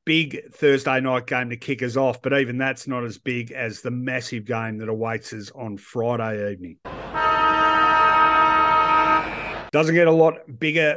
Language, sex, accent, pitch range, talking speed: English, male, Australian, 120-140 Hz, 160 wpm